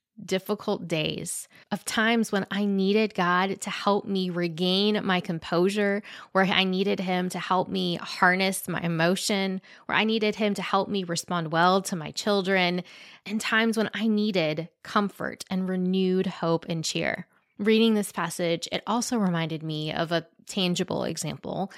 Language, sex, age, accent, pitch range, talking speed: English, female, 20-39, American, 175-210 Hz, 160 wpm